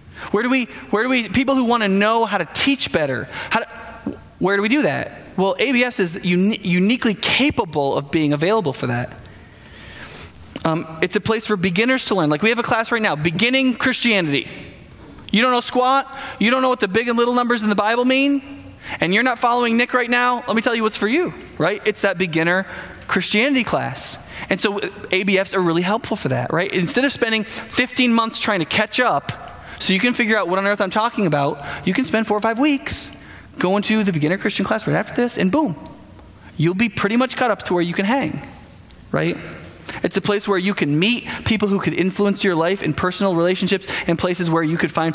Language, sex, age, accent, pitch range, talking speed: English, male, 20-39, American, 165-235 Hz, 225 wpm